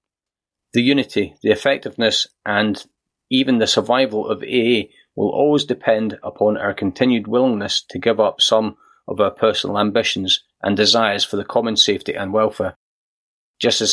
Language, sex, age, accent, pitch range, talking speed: English, male, 30-49, British, 105-125 Hz, 150 wpm